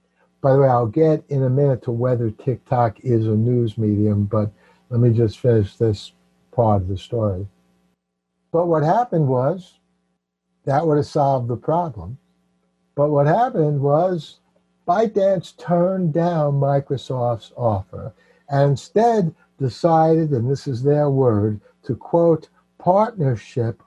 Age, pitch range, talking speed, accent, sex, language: 60-79, 105-150 Hz, 140 wpm, American, male, English